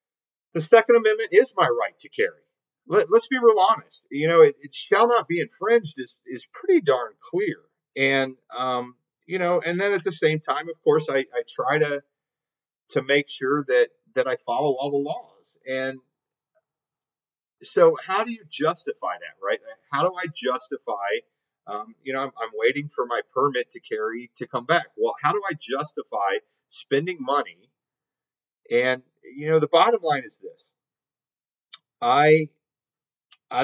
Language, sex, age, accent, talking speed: English, male, 40-59, American, 170 wpm